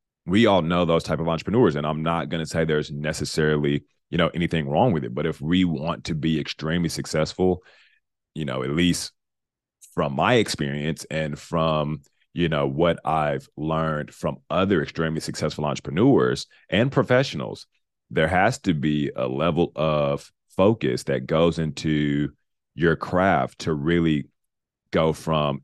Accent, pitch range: American, 75-85 Hz